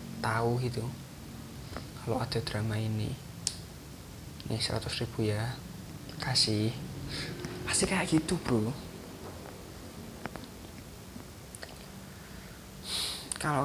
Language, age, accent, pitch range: Indonesian, 20-39, native, 110-160 Hz